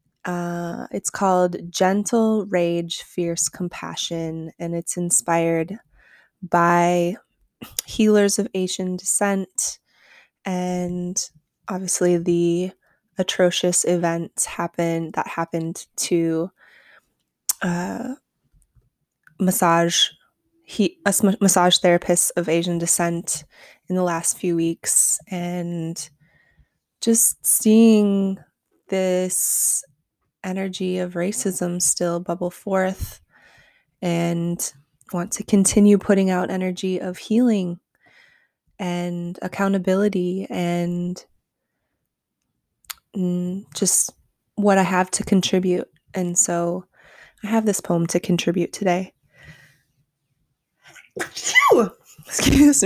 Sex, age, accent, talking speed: female, 20-39, American, 85 wpm